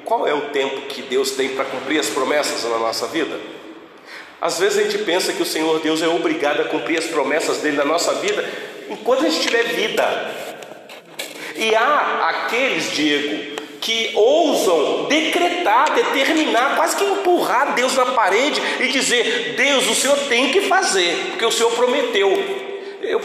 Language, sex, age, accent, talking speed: Portuguese, male, 40-59, Brazilian, 170 wpm